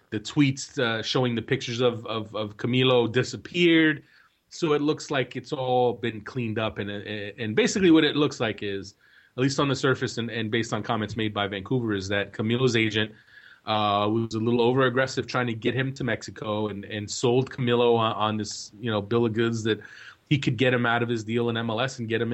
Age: 30-49